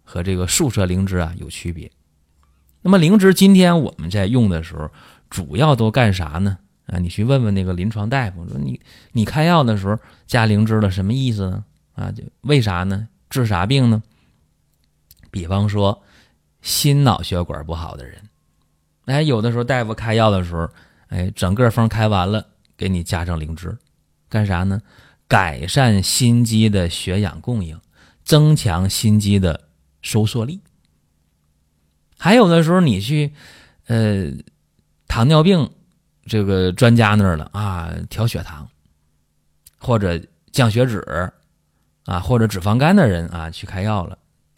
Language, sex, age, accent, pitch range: Chinese, male, 30-49, native, 85-115 Hz